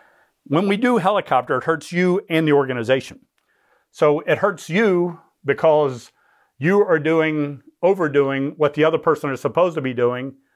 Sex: male